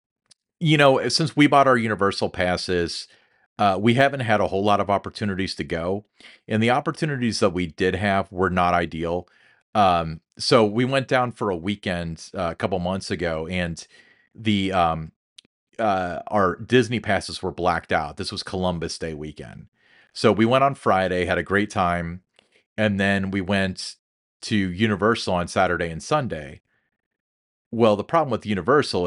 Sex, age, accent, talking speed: male, 40-59, American, 165 wpm